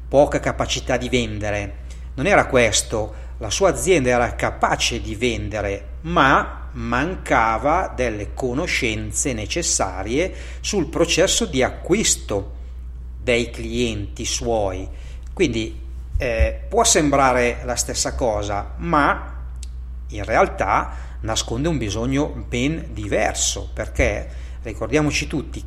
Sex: male